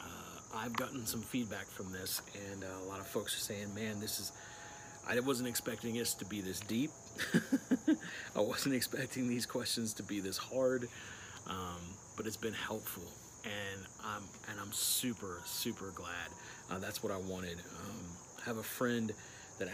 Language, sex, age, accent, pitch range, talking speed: English, male, 40-59, American, 95-120 Hz, 175 wpm